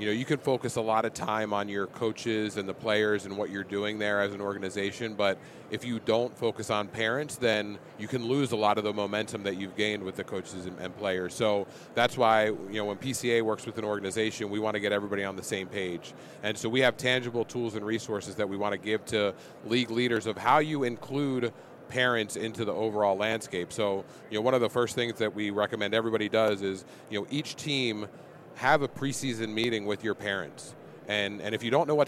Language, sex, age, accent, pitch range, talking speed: English, male, 30-49, American, 105-125 Hz, 230 wpm